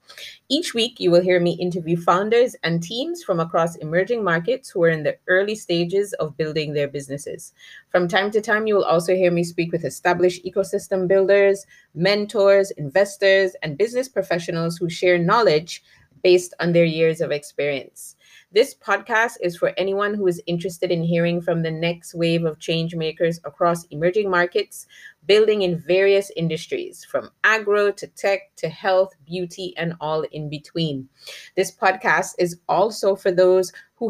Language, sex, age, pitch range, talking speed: English, female, 30-49, 165-195 Hz, 165 wpm